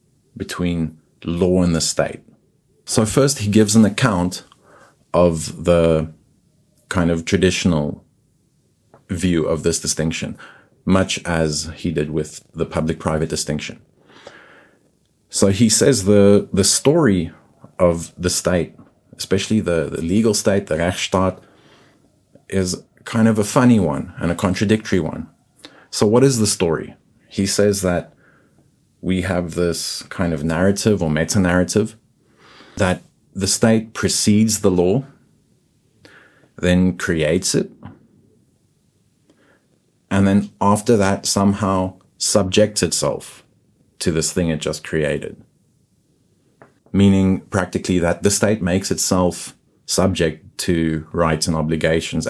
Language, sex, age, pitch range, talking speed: English, male, 30-49, 85-105 Hz, 120 wpm